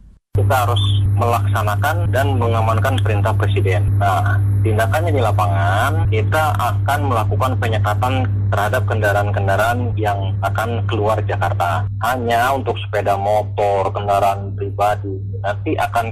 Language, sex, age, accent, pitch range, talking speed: Indonesian, male, 30-49, native, 100-120 Hz, 110 wpm